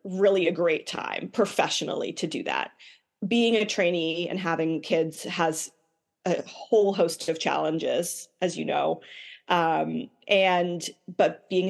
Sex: female